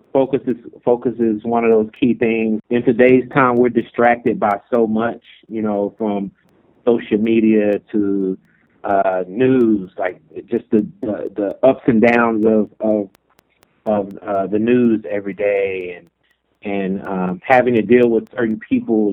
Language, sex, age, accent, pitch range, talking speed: English, male, 30-49, American, 105-125 Hz, 155 wpm